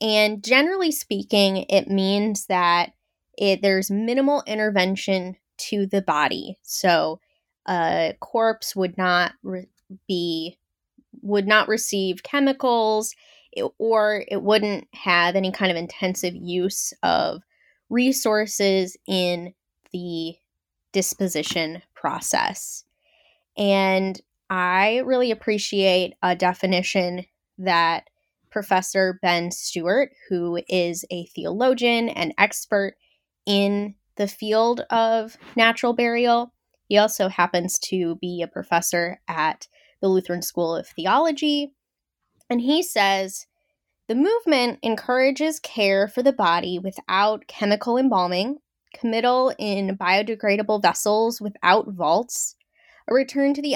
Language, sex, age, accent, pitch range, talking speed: English, female, 10-29, American, 185-235 Hz, 110 wpm